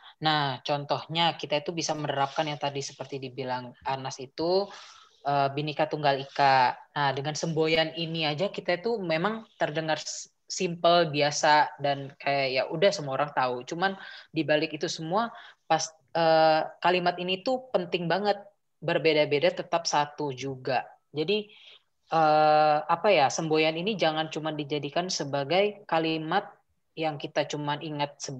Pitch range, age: 145-175 Hz, 20-39